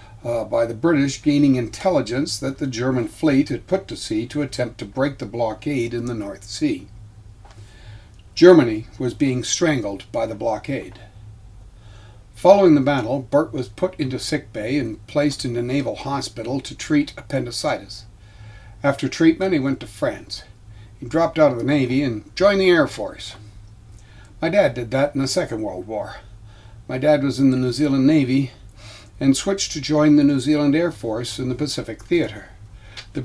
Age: 60-79